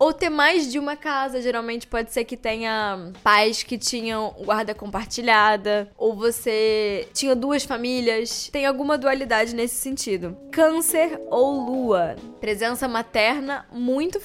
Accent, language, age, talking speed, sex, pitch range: Brazilian, Portuguese, 10-29, 135 wpm, female, 215-265 Hz